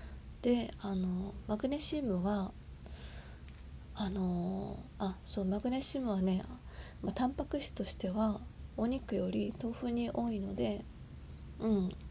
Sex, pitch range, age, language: female, 185-245 Hz, 20-39, Japanese